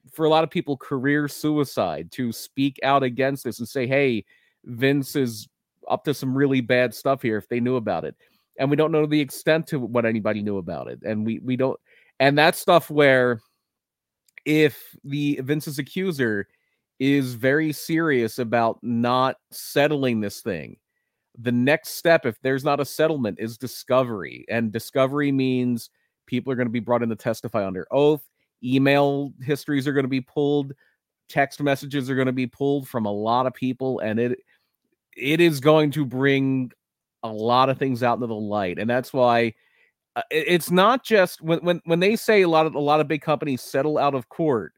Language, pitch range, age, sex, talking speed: English, 120-150 Hz, 30-49, male, 190 wpm